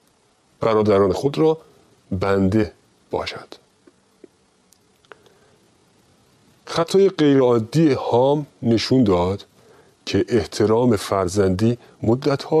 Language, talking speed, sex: Persian, 65 wpm, male